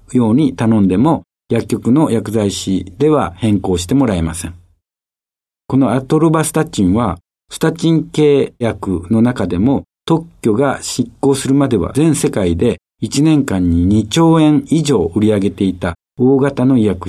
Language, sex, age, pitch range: Japanese, male, 60-79, 95-145 Hz